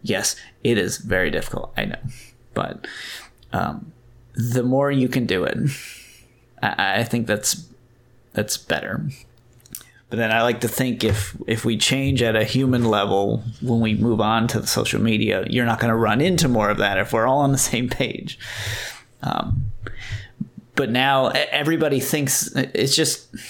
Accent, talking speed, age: American, 170 wpm, 30-49